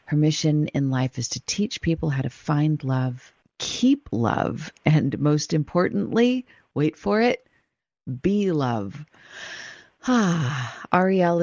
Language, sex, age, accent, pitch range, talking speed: English, female, 40-59, American, 130-160 Hz, 120 wpm